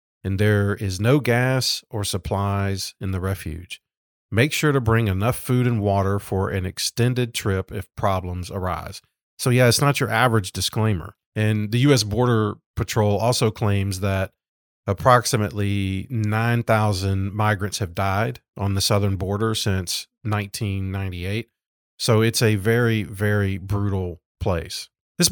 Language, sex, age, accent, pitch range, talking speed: English, male, 40-59, American, 95-120 Hz, 140 wpm